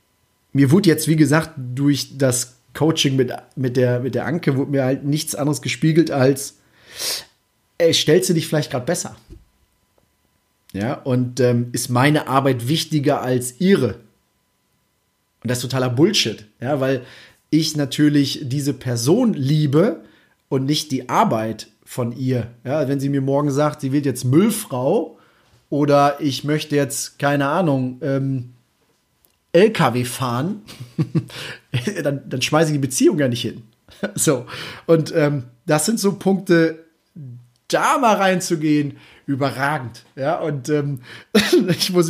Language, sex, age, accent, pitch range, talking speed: German, male, 30-49, German, 125-155 Hz, 140 wpm